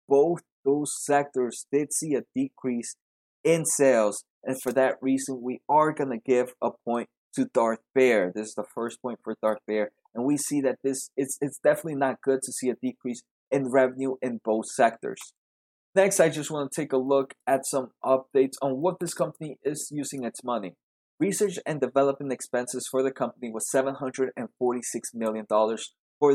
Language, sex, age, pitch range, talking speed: English, male, 20-39, 120-145 Hz, 180 wpm